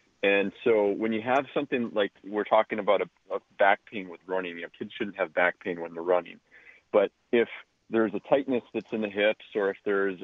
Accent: American